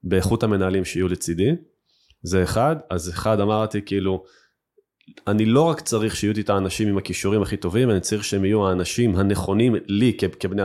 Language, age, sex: Hebrew, 20-39, male